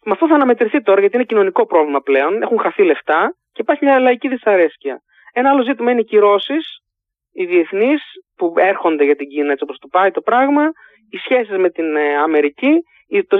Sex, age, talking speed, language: male, 20-39, 195 wpm, Greek